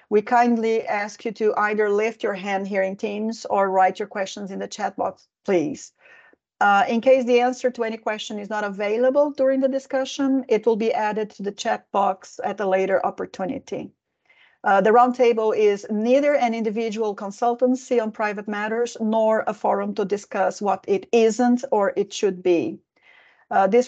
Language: Finnish